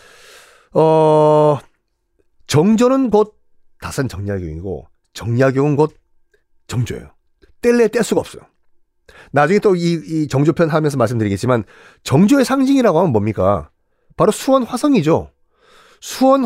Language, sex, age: Korean, male, 40-59